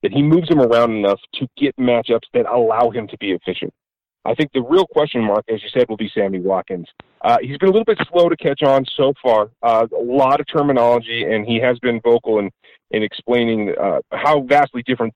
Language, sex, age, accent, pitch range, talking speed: English, male, 40-59, American, 120-155 Hz, 225 wpm